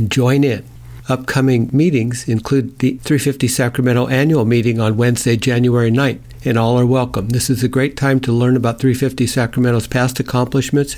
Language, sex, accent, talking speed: English, male, American, 165 wpm